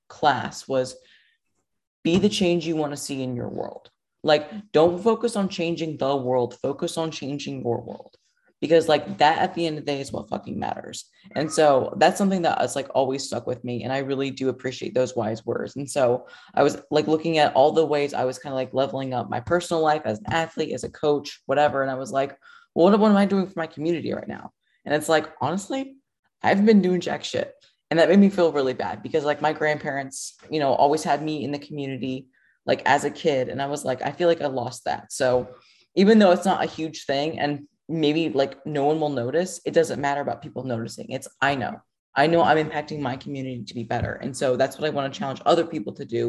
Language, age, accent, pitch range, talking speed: English, 20-39, American, 130-165 Hz, 240 wpm